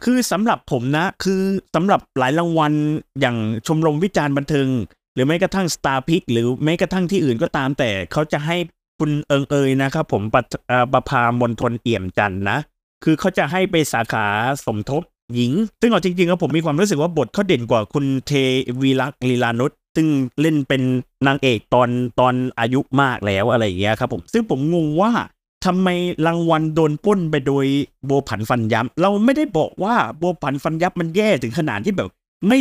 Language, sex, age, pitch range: Thai, male, 30-49, 130-190 Hz